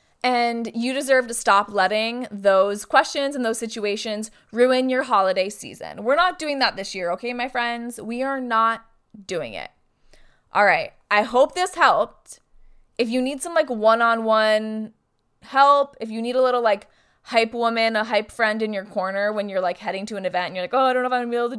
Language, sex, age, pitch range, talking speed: English, female, 20-39, 195-240 Hz, 220 wpm